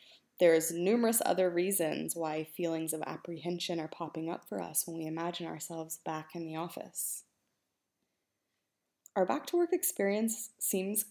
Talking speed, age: 135 wpm, 20-39